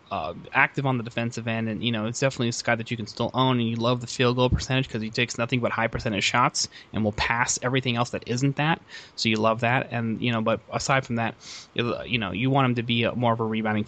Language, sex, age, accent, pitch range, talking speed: English, male, 20-39, American, 110-130 Hz, 270 wpm